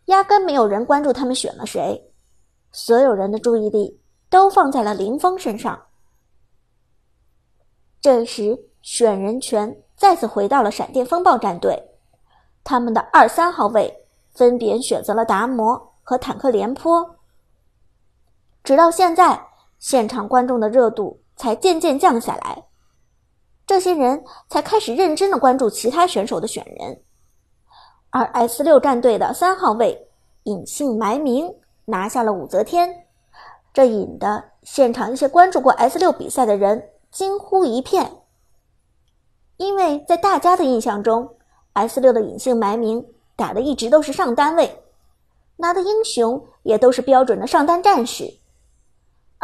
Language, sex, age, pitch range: Chinese, male, 50-69, 235-350 Hz